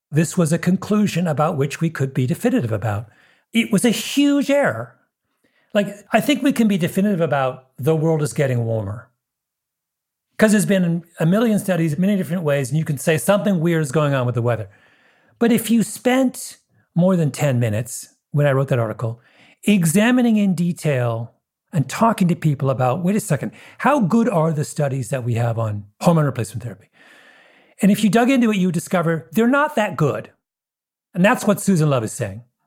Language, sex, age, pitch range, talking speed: English, male, 40-59, 130-195 Hz, 195 wpm